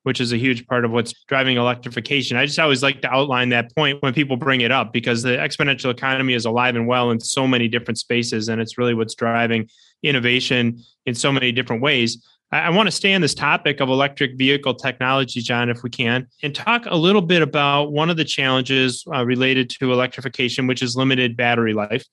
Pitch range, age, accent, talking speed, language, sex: 120-140 Hz, 20-39, American, 220 wpm, English, male